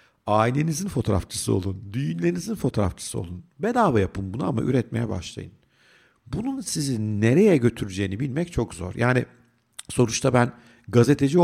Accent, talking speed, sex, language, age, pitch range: native, 120 wpm, male, Turkish, 50-69, 110-145 Hz